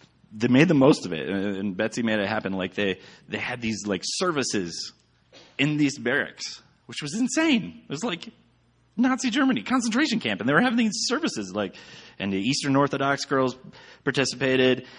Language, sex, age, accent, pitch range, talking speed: English, male, 30-49, American, 95-140 Hz, 175 wpm